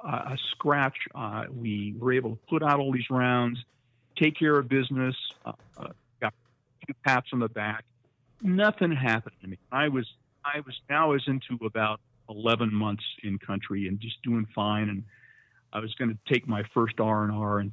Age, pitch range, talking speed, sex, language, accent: 50-69, 110-130 Hz, 190 wpm, male, English, American